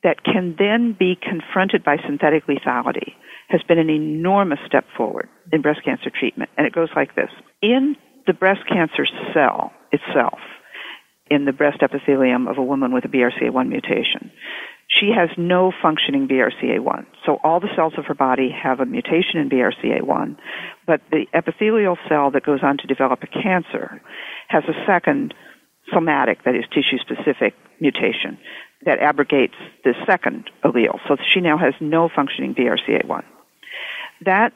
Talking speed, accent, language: 155 wpm, American, English